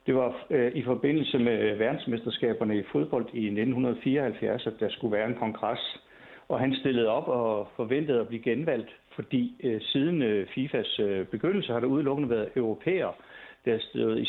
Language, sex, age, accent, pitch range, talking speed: Danish, male, 60-79, native, 110-130 Hz, 155 wpm